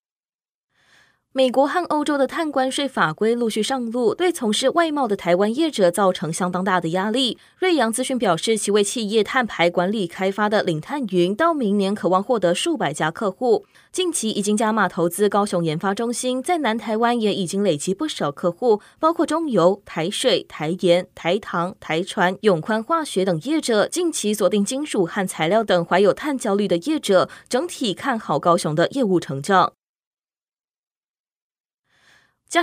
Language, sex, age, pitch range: Chinese, female, 20-39, 180-260 Hz